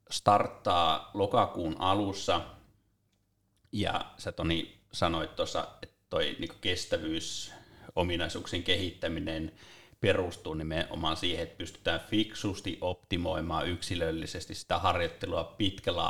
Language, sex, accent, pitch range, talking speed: Finnish, male, native, 85-105 Hz, 80 wpm